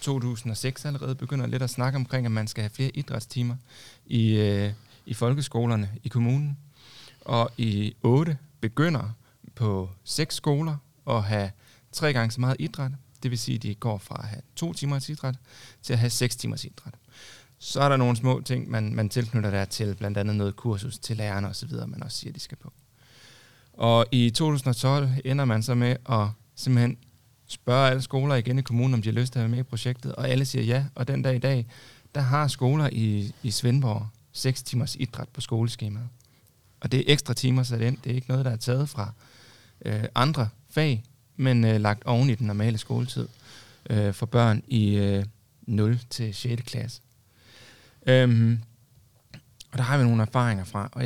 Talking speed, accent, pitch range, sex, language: 190 wpm, native, 115-130 Hz, male, Danish